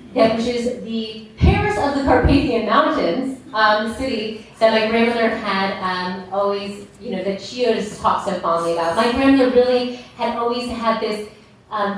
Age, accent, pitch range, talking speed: 30-49, American, 190-235 Hz, 175 wpm